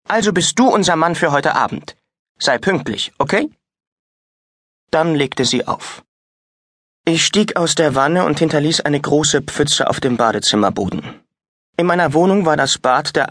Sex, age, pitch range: male, 30-49, 125-165 Hz